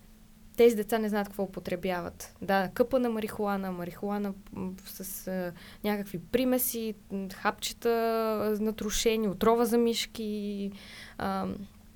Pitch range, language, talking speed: 210-260 Hz, Bulgarian, 105 wpm